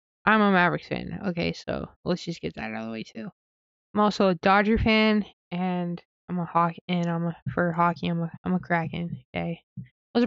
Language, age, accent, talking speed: English, 20-39, American, 210 wpm